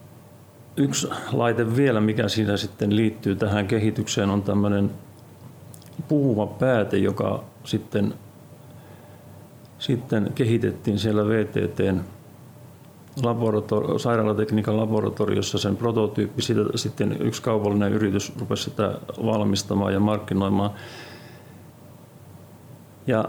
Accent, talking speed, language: native, 90 wpm, Finnish